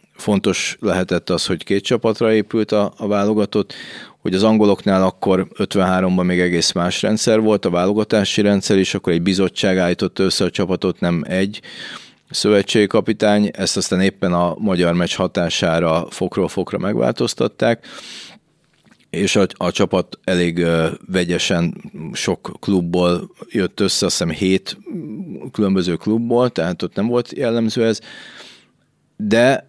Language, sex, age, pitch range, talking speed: Hungarian, male, 30-49, 85-100 Hz, 135 wpm